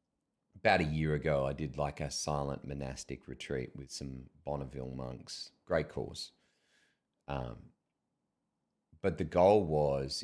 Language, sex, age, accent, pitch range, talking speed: English, male, 30-49, Australian, 70-80 Hz, 130 wpm